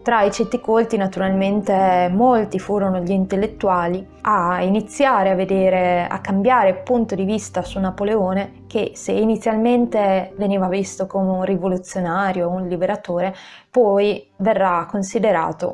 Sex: female